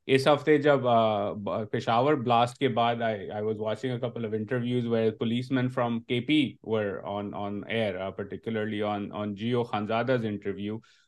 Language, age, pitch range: Urdu, 30-49, 110-135 Hz